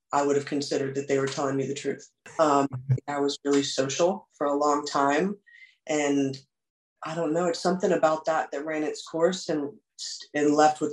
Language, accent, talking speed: English, American, 200 wpm